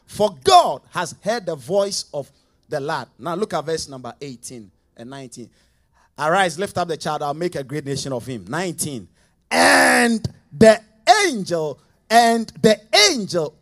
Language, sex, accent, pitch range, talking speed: English, male, Nigerian, 140-235 Hz, 160 wpm